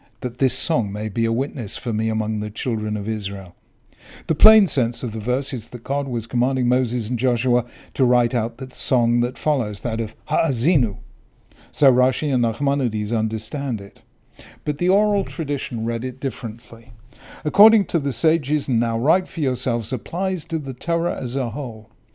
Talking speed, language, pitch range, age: 180 wpm, English, 115-145 Hz, 50-69